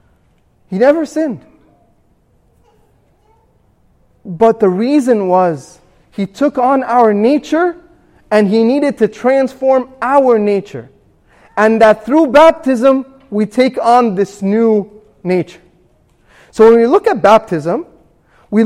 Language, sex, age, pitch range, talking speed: English, male, 30-49, 205-270 Hz, 115 wpm